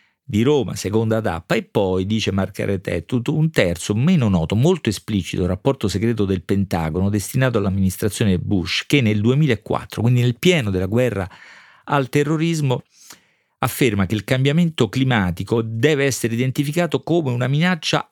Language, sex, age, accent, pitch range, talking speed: Italian, male, 40-59, native, 100-140 Hz, 140 wpm